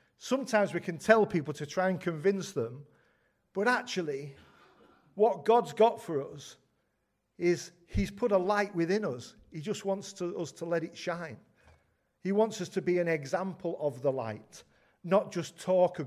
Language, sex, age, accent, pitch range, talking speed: English, male, 40-59, British, 120-175 Hz, 170 wpm